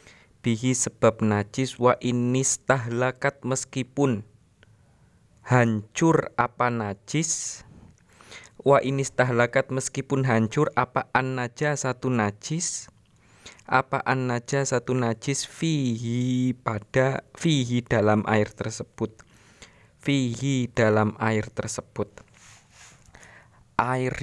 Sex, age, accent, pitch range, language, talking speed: male, 20-39, native, 110-135 Hz, Indonesian, 85 wpm